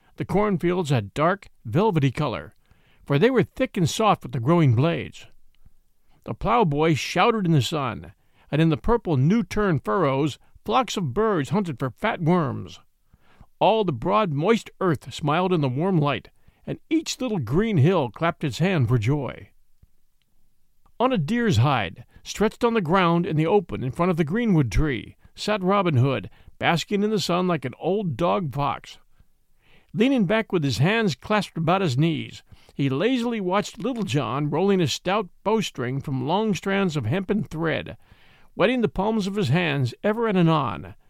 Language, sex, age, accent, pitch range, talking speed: English, male, 50-69, American, 140-205 Hz, 170 wpm